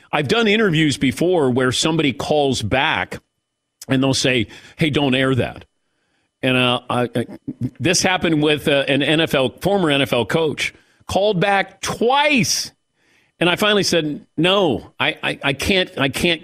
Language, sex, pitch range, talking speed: English, male, 115-155 Hz, 155 wpm